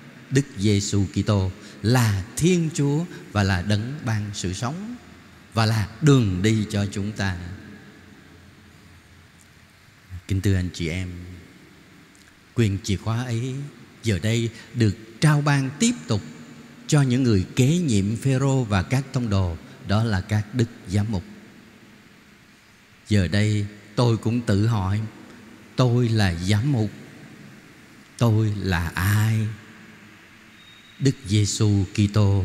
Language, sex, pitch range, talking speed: Vietnamese, male, 105-140 Hz, 125 wpm